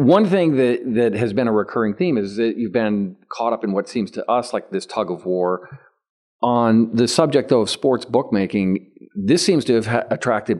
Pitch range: 100-125 Hz